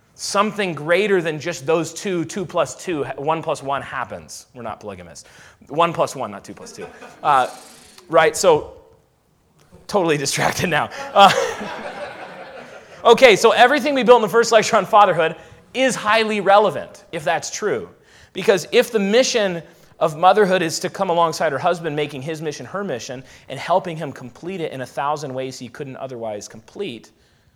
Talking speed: 170 wpm